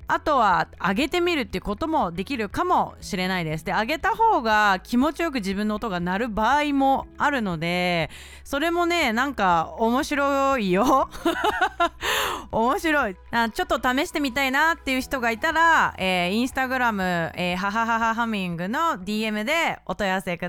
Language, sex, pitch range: Japanese, female, 190-280 Hz